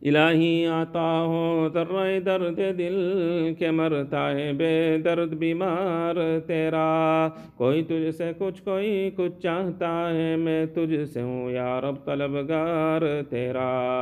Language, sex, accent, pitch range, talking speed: English, male, Indian, 140-165 Hz, 125 wpm